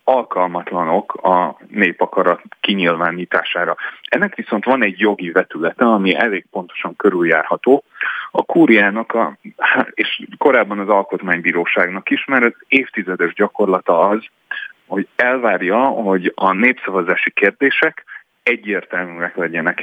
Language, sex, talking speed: Hungarian, male, 105 wpm